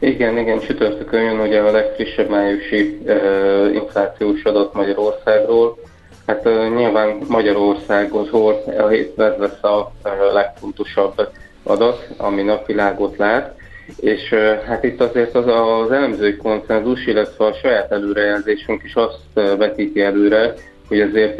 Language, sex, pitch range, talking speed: Hungarian, male, 100-110 Hz, 115 wpm